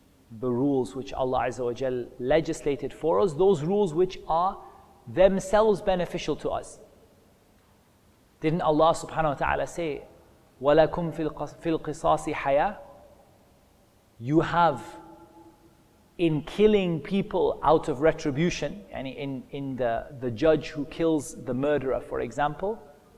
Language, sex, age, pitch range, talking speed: English, male, 30-49, 140-185 Hz, 110 wpm